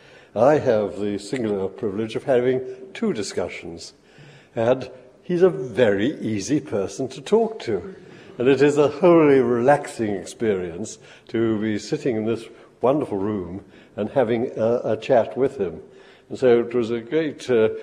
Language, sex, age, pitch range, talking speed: English, male, 60-79, 110-145 Hz, 150 wpm